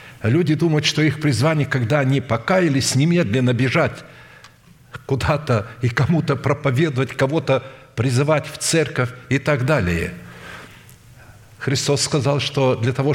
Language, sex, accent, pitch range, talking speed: Russian, male, native, 120-150 Hz, 120 wpm